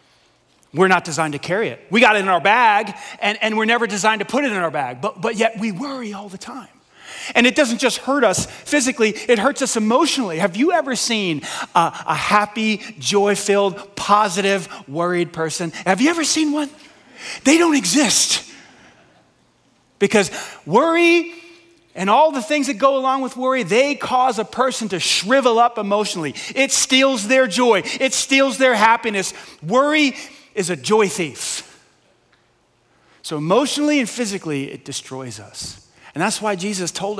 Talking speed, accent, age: 170 wpm, American, 30-49